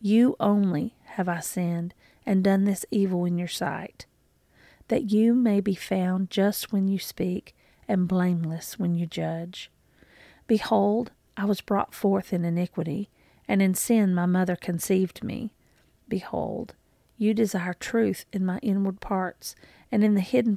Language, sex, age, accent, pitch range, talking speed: English, female, 40-59, American, 180-215 Hz, 150 wpm